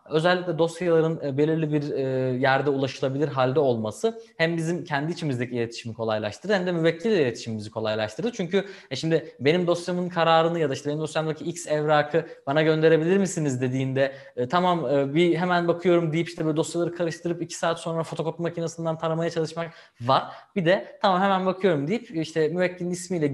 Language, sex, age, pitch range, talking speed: Turkish, male, 20-39, 135-175 Hz, 160 wpm